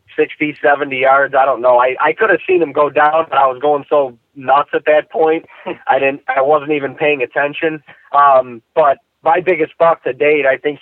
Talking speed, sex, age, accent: 210 wpm, male, 30-49, American